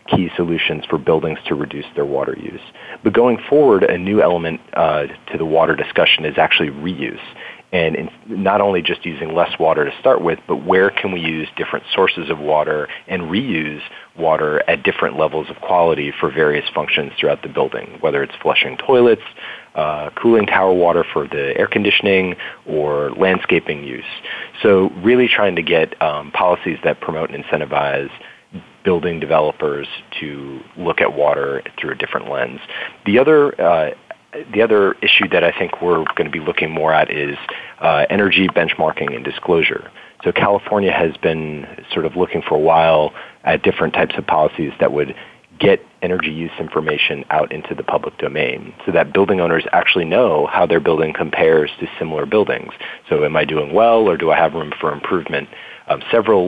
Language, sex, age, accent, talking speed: English, male, 40-59, American, 175 wpm